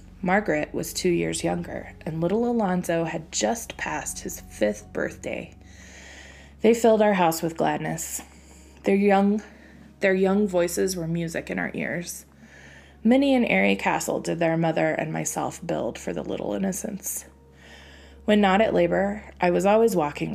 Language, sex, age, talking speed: English, female, 20-39, 155 wpm